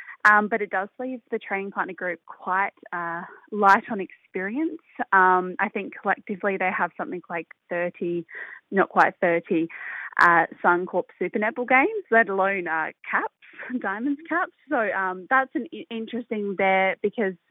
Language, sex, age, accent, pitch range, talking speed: English, female, 20-39, Australian, 180-220 Hz, 150 wpm